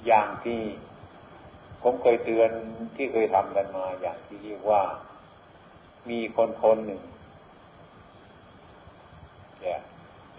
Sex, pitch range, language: male, 90-115 Hz, Thai